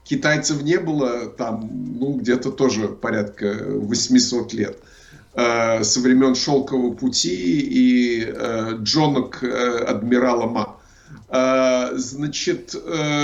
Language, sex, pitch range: Russian, male, 125-165 Hz